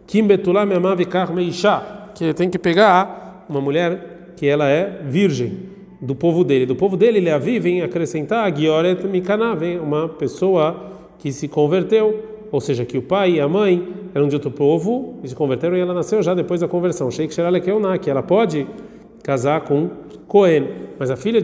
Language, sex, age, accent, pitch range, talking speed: Portuguese, male, 40-59, Brazilian, 140-185 Hz, 160 wpm